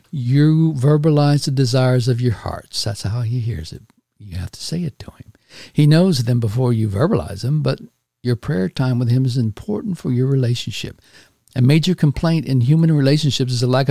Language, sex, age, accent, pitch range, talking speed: English, male, 60-79, American, 110-140 Hz, 200 wpm